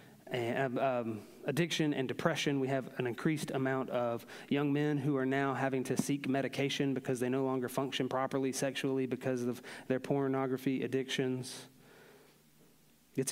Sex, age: male, 30-49